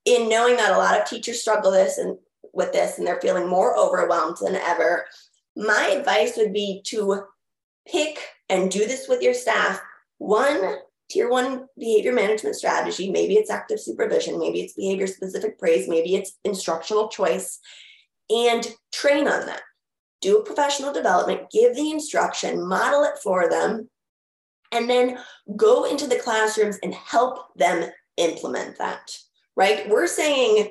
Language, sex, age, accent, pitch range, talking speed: English, female, 20-39, American, 195-290 Hz, 150 wpm